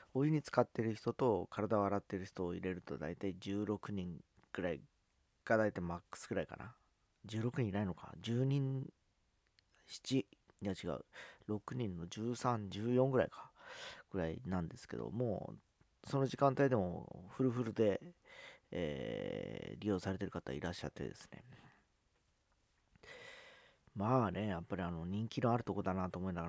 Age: 40-59